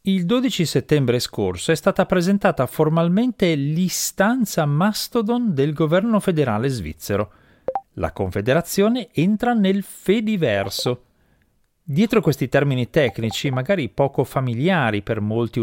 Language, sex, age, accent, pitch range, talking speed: Italian, male, 30-49, native, 120-190 Hz, 110 wpm